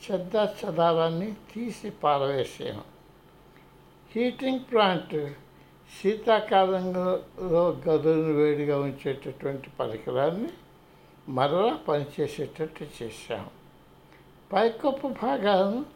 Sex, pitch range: male, 150-205 Hz